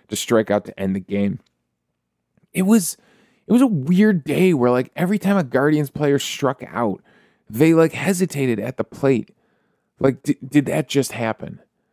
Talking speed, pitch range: 175 wpm, 115-185 Hz